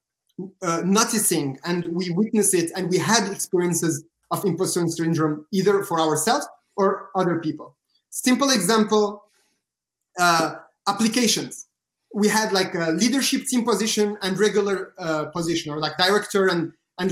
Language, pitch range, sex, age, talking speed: English, 170-220 Hz, male, 30-49, 135 wpm